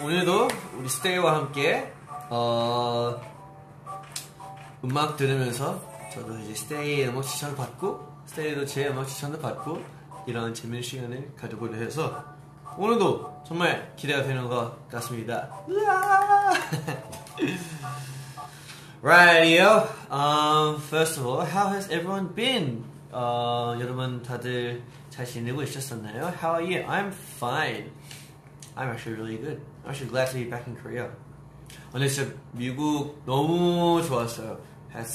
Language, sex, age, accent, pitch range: Korean, male, 20-39, native, 120-150 Hz